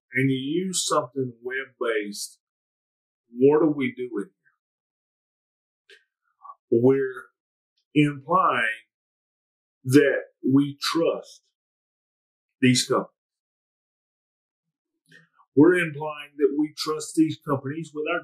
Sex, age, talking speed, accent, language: male, 40-59, 85 wpm, American, English